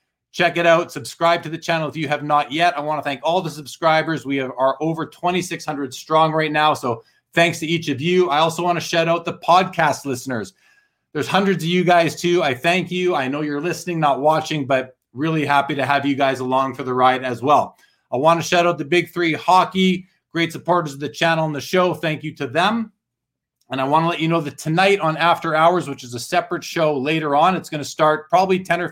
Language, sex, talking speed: English, male, 240 wpm